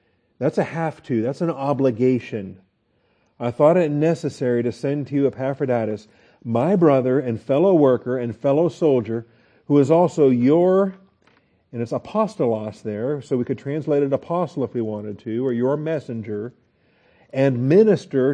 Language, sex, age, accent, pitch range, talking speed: English, male, 50-69, American, 120-165 Hz, 150 wpm